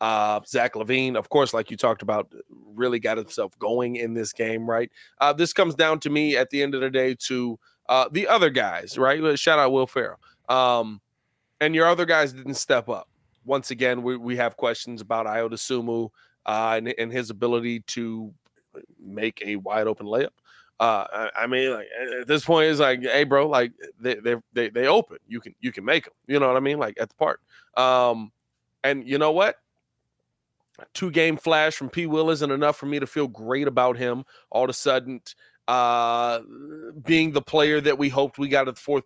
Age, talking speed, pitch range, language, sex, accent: 20-39, 205 wpm, 115-145 Hz, English, male, American